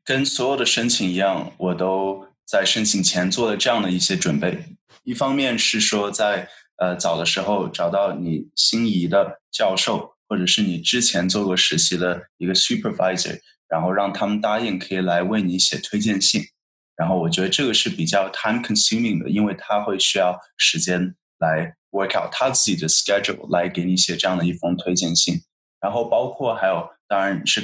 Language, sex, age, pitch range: Chinese, male, 20-39, 90-100 Hz